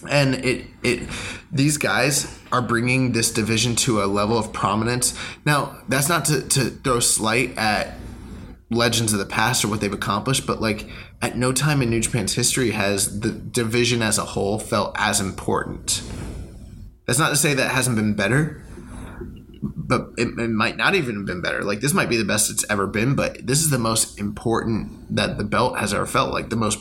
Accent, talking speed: American, 200 wpm